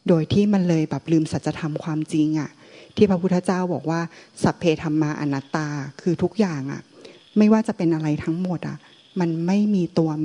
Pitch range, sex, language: 155-185 Hz, female, Thai